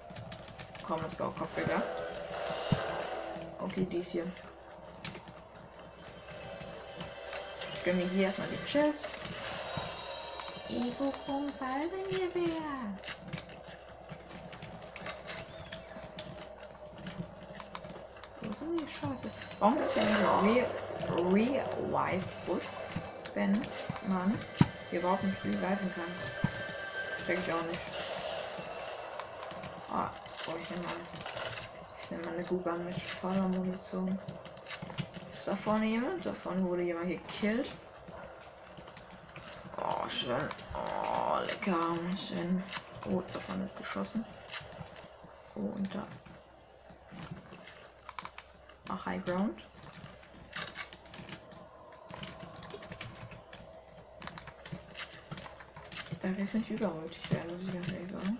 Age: 20-39